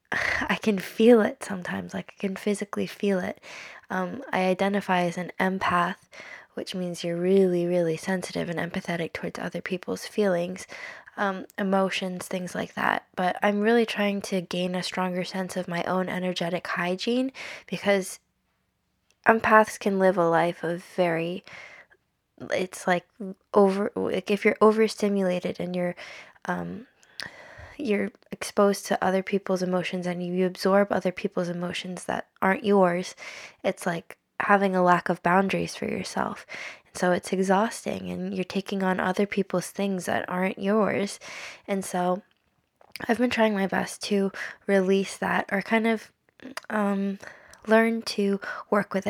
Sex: female